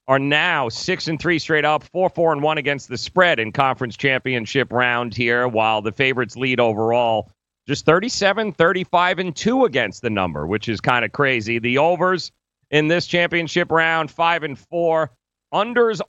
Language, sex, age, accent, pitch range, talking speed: English, male, 40-59, American, 115-160 Hz, 175 wpm